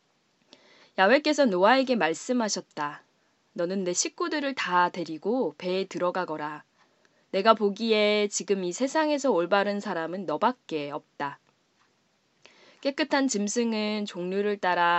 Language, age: Korean, 20-39